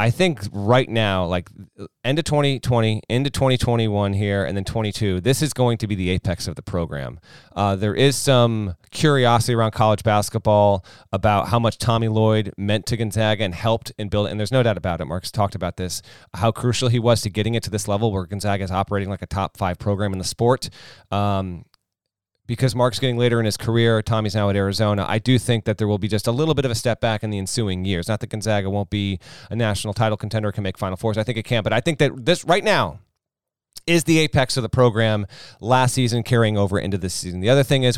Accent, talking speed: American, 235 wpm